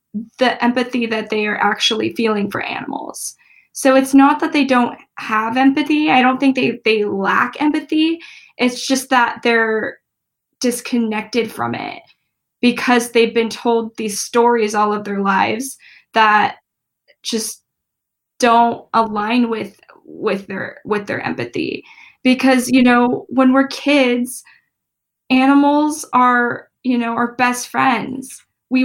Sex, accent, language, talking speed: female, American, English, 135 wpm